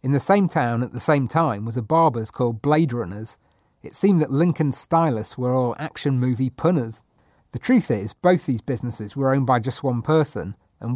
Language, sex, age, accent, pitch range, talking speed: English, male, 40-59, British, 115-150 Hz, 205 wpm